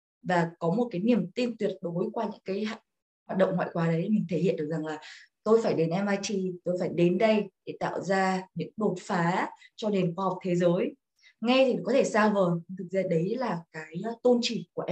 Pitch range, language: 175-215 Hz, Vietnamese